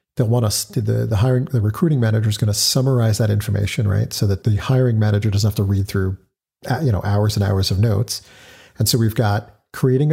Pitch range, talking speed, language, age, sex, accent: 100-125 Hz, 220 wpm, English, 40-59, male, American